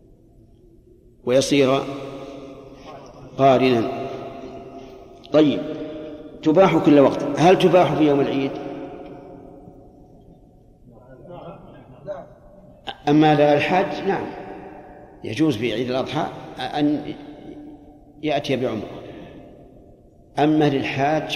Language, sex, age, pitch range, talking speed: Arabic, male, 50-69, 130-150 Hz, 65 wpm